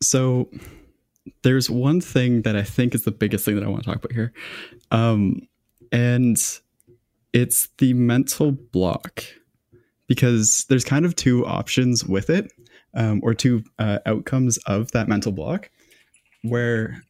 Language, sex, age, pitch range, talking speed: English, male, 20-39, 100-120 Hz, 145 wpm